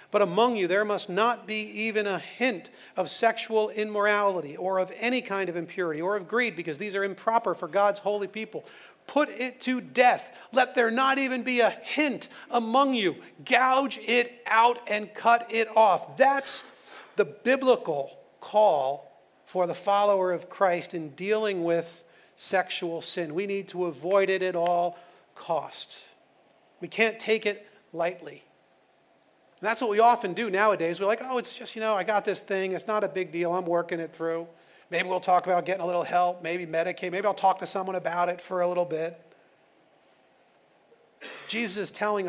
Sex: male